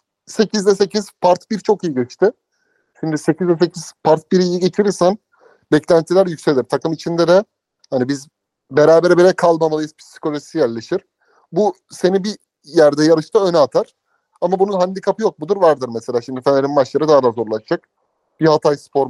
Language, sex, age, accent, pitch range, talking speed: Turkish, male, 30-49, native, 145-185 Hz, 155 wpm